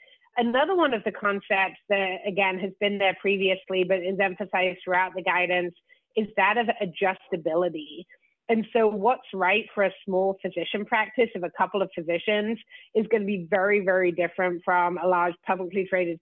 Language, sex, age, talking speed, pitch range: English, female, 30-49, 175 wpm, 180-210 Hz